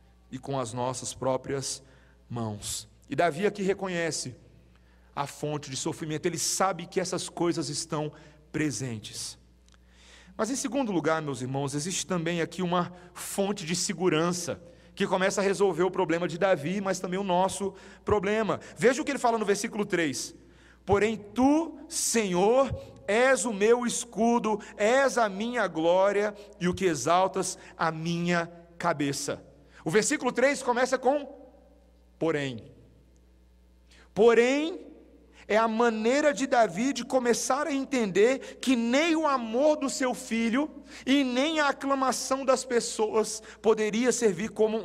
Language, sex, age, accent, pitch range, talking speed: Portuguese, male, 40-59, Brazilian, 155-235 Hz, 140 wpm